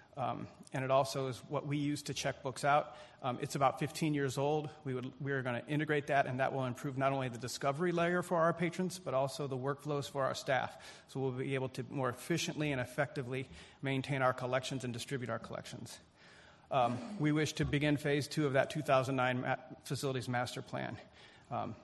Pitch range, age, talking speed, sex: 130-150 Hz, 40-59, 205 wpm, male